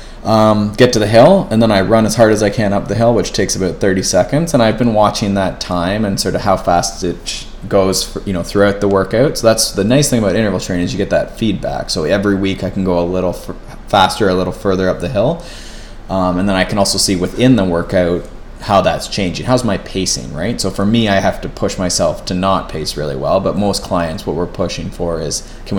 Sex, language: male, English